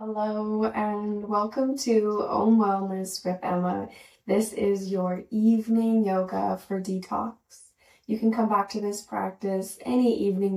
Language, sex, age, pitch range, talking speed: English, female, 10-29, 190-225 Hz, 135 wpm